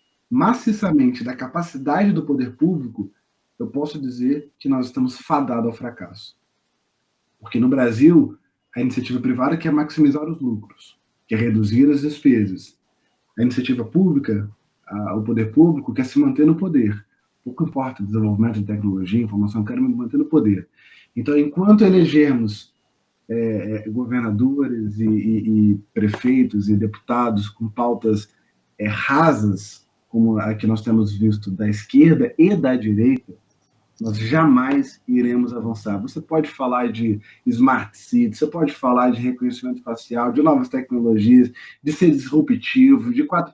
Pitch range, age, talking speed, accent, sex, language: 115-175 Hz, 20-39, 130 wpm, Brazilian, male, Portuguese